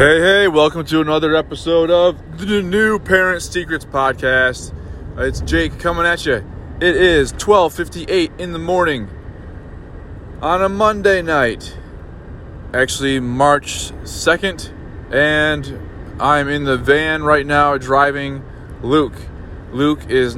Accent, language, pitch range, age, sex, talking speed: American, English, 95-140 Hz, 20-39, male, 120 wpm